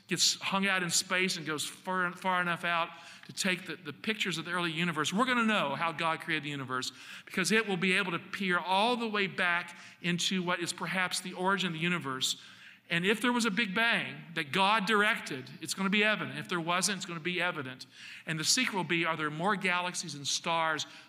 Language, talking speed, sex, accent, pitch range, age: English, 235 wpm, male, American, 160-195 Hz, 50-69